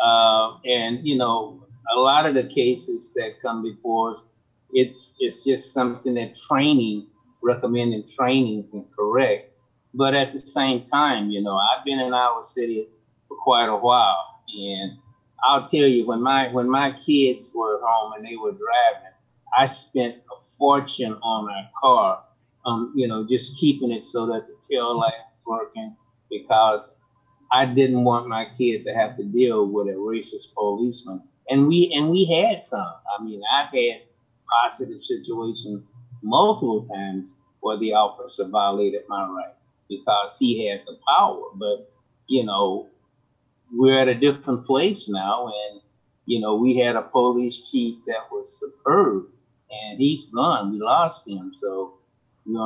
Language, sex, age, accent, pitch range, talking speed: English, male, 30-49, American, 110-135 Hz, 165 wpm